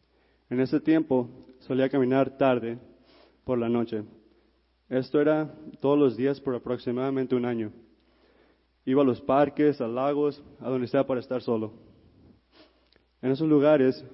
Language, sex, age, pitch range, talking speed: English, male, 20-39, 115-130 Hz, 140 wpm